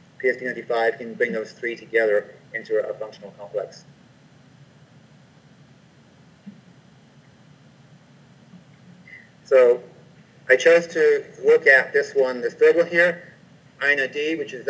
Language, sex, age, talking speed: English, male, 30-49, 100 wpm